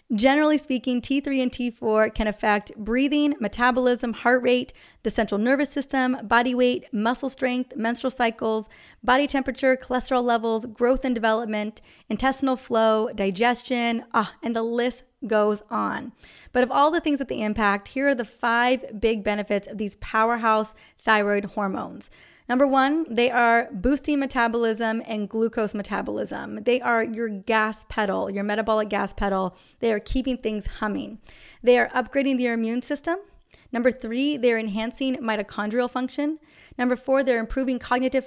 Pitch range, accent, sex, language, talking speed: 220-255 Hz, American, female, English, 150 wpm